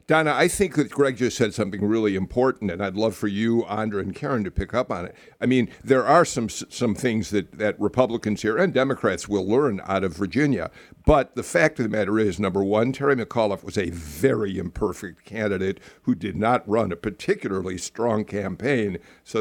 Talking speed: 205 wpm